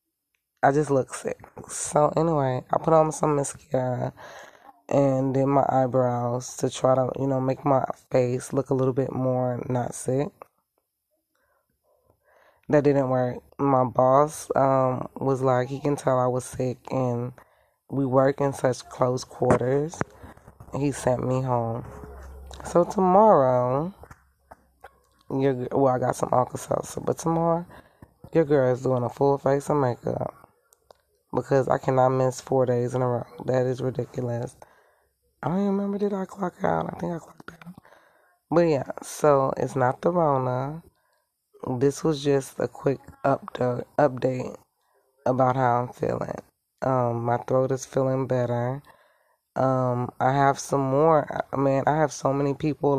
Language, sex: English, female